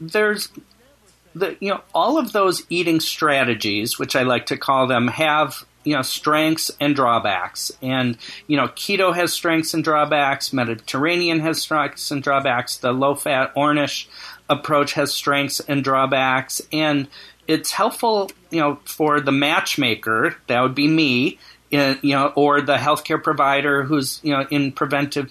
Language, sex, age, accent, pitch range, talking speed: English, male, 40-59, American, 135-155 Hz, 155 wpm